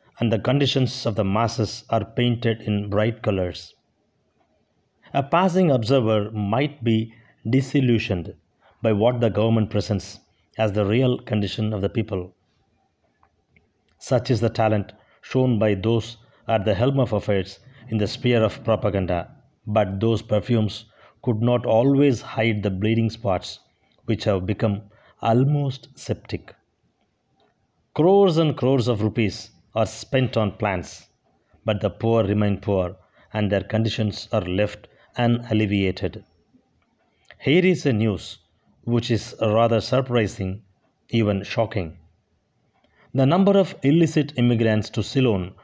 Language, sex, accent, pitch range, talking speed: Tamil, male, native, 105-125 Hz, 130 wpm